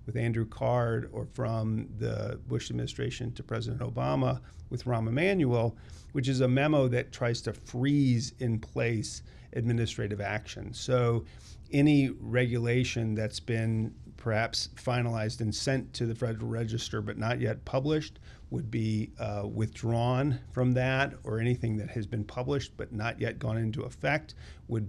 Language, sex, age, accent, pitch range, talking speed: English, male, 40-59, American, 110-125 Hz, 150 wpm